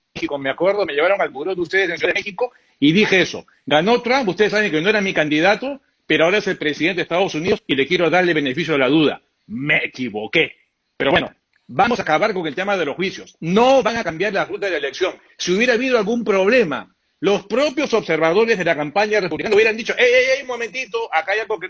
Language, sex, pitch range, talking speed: Spanish, male, 190-245 Hz, 235 wpm